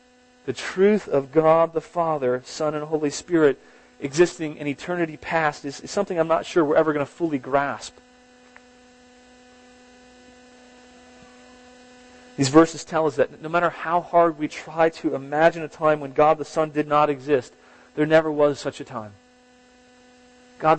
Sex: male